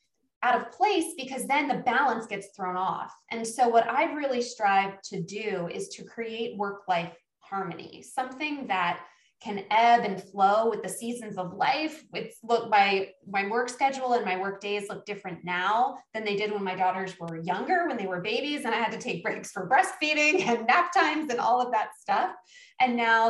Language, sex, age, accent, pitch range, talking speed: English, female, 20-39, American, 190-250 Hz, 200 wpm